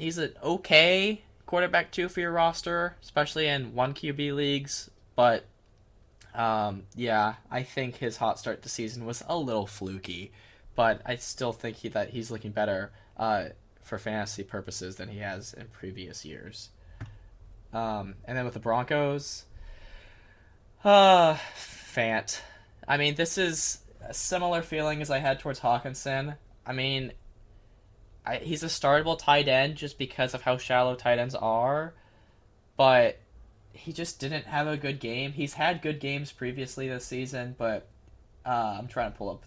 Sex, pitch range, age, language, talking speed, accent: male, 105-140 Hz, 10-29, English, 155 wpm, American